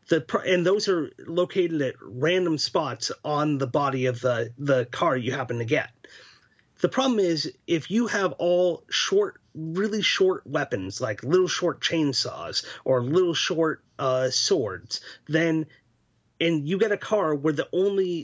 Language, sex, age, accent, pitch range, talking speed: English, male, 30-49, American, 140-180 Hz, 155 wpm